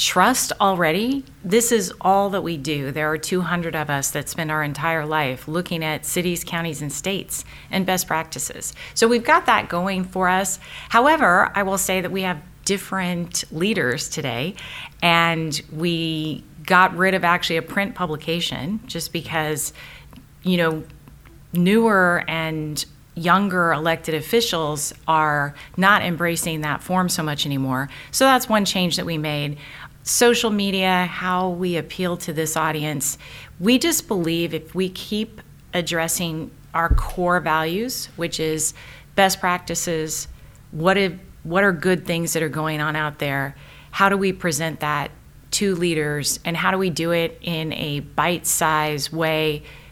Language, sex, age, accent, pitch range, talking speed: English, female, 30-49, American, 155-185 Hz, 155 wpm